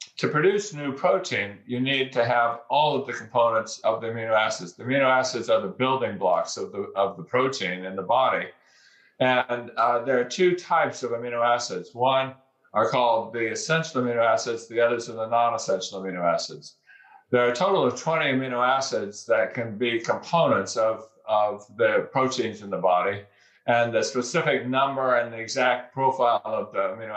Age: 50-69